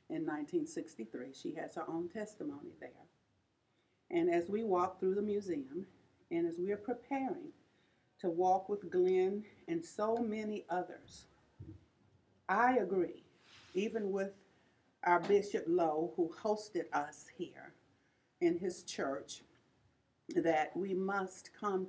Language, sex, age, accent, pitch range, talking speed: English, female, 50-69, American, 165-215 Hz, 125 wpm